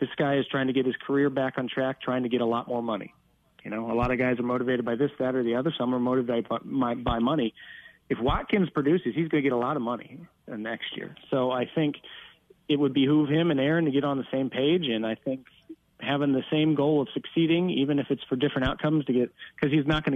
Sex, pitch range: male, 125-145 Hz